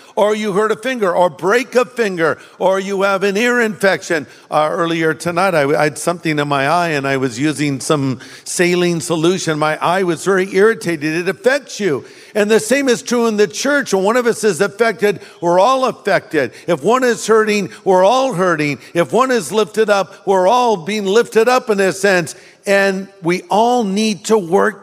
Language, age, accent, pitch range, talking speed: English, 50-69, American, 165-215 Hz, 200 wpm